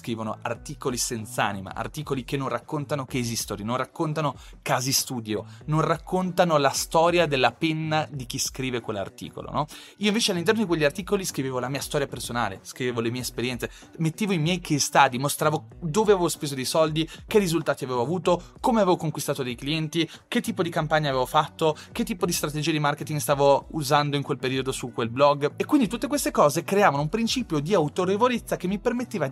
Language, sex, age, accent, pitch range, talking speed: Italian, male, 30-49, native, 125-185 Hz, 185 wpm